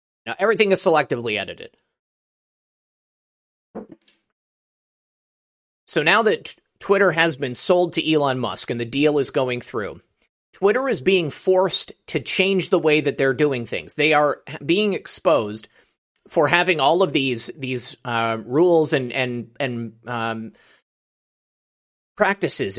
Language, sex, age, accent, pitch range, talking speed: English, male, 30-49, American, 130-165 Hz, 130 wpm